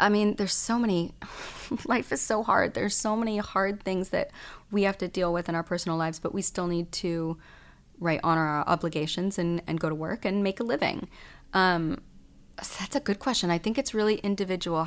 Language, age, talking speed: English, 30-49, 210 wpm